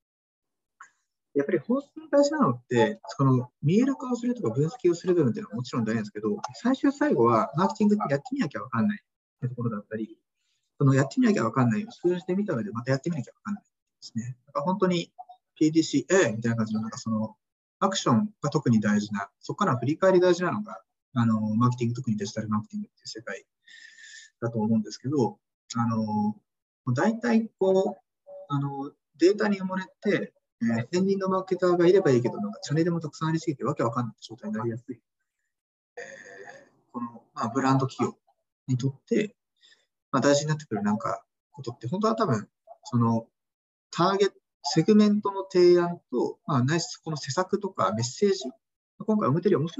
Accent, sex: native, male